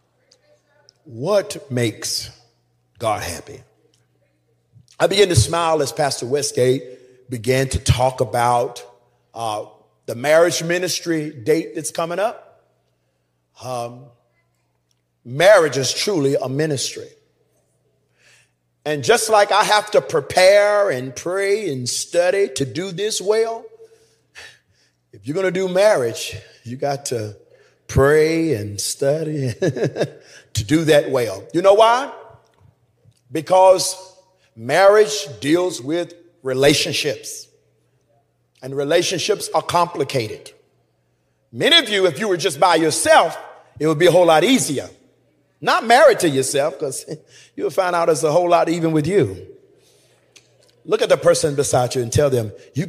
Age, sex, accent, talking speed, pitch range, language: 40-59, male, American, 130 wpm, 125-190 Hz, English